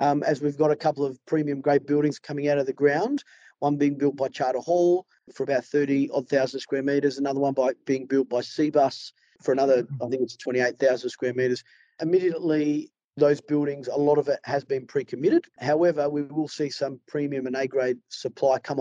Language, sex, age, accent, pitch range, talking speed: English, male, 40-59, Australian, 140-165 Hz, 200 wpm